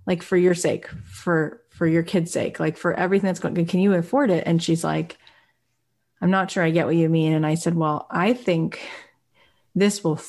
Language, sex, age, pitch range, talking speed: English, female, 30-49, 155-185 Hz, 215 wpm